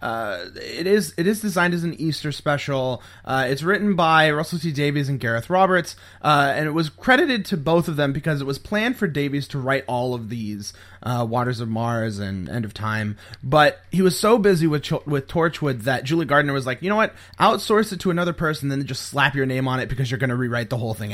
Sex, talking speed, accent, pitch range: male, 240 wpm, American, 125-165 Hz